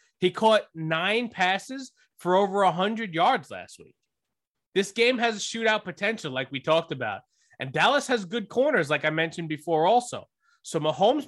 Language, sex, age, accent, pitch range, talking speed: English, male, 20-39, American, 165-225 Hz, 170 wpm